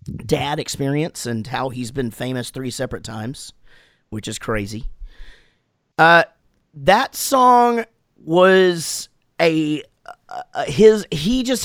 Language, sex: English, male